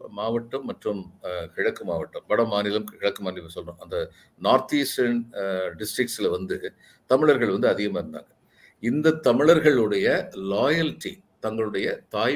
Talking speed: 110 wpm